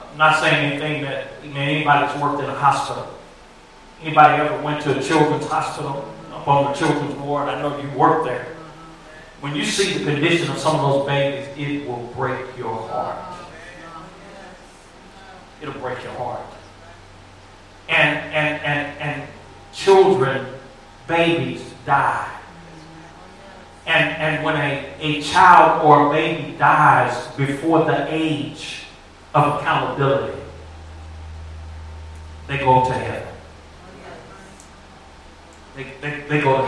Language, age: English, 40-59